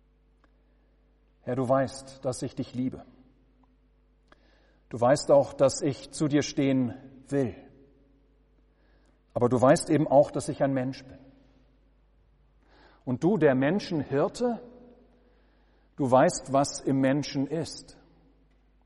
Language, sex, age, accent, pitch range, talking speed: German, male, 50-69, German, 130-155 Hz, 115 wpm